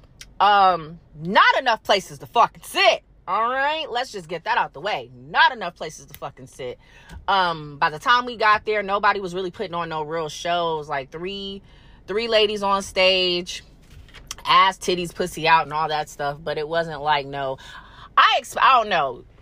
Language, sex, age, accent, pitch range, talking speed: English, female, 20-39, American, 155-210 Hz, 185 wpm